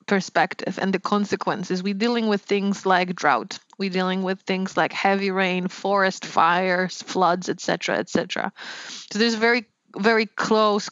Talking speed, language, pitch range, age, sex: 165 wpm, English, 185-210 Hz, 20-39, female